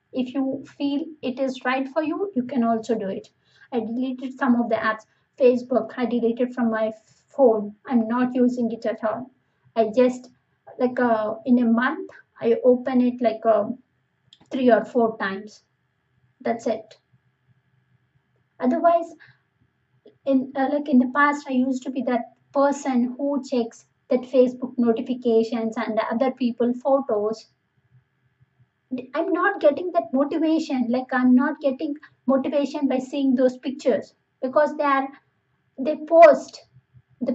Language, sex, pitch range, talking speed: Telugu, female, 220-270 Hz, 150 wpm